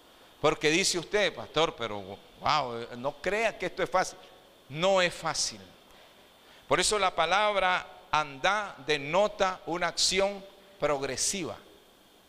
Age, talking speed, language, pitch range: 50-69, 115 wpm, Spanish, 130-195 Hz